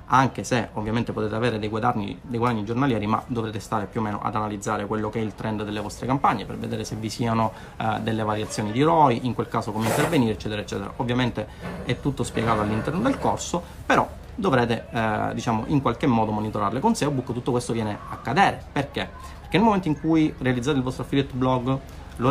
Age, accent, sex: 30-49, native, male